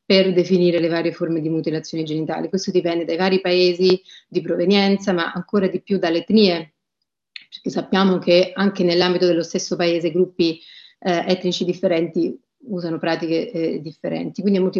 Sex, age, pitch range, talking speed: female, 30-49, 170-190 Hz, 160 wpm